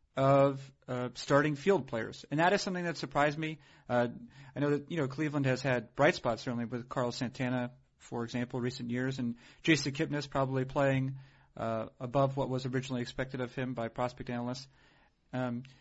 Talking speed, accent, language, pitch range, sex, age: 180 wpm, American, English, 125-150 Hz, male, 40-59